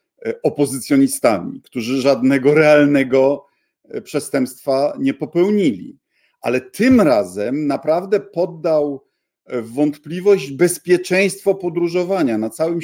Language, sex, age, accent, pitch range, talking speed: Polish, male, 50-69, native, 125-160 Hz, 85 wpm